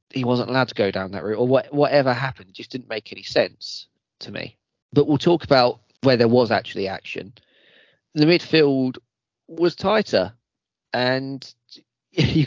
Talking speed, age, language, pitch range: 160 wpm, 20-39, English, 105-130 Hz